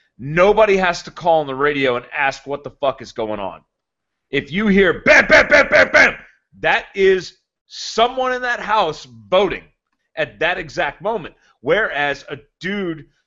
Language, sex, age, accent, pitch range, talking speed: English, male, 40-59, American, 145-190 Hz, 170 wpm